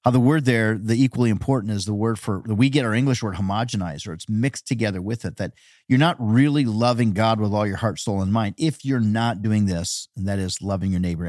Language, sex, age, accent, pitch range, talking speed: English, male, 40-59, American, 100-125 Hz, 250 wpm